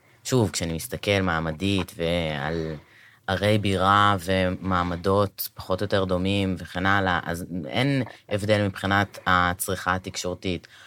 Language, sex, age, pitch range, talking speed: Hebrew, female, 20-39, 90-110 Hz, 110 wpm